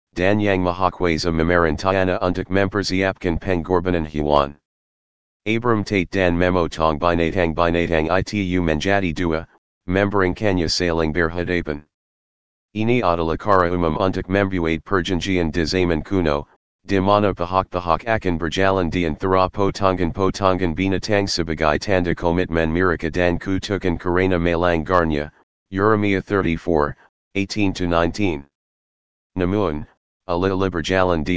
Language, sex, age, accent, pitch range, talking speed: English, male, 40-59, American, 85-95 Hz, 120 wpm